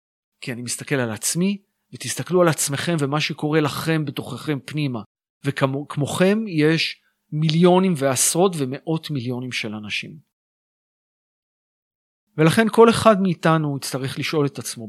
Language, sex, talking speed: Hebrew, male, 115 wpm